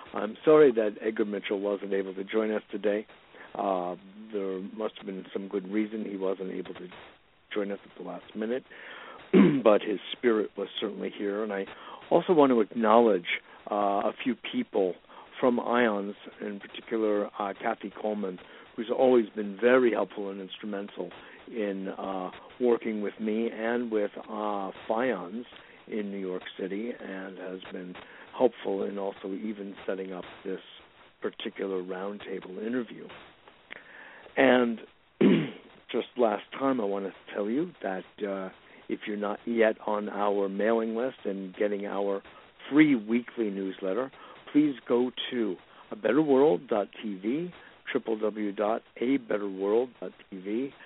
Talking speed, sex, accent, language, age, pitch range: 135 wpm, male, American, English, 60-79, 95-115 Hz